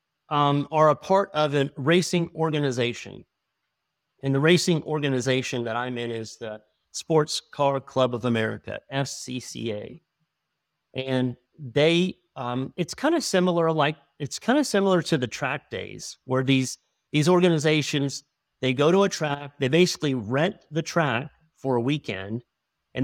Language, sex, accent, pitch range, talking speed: English, male, American, 125-160 Hz, 150 wpm